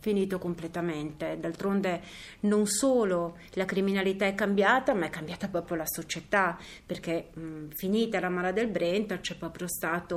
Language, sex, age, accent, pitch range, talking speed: Italian, female, 30-49, native, 175-210 Hz, 150 wpm